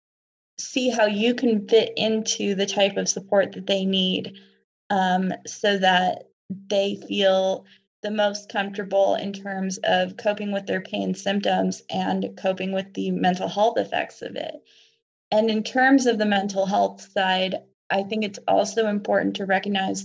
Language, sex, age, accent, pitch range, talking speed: English, female, 20-39, American, 190-225 Hz, 160 wpm